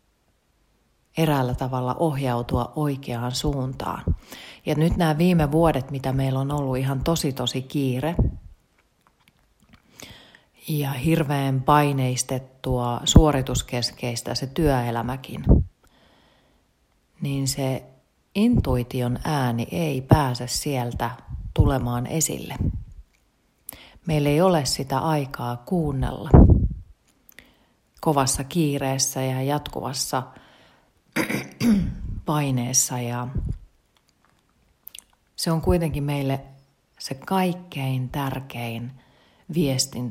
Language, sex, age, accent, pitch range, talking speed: Finnish, female, 30-49, native, 125-160 Hz, 80 wpm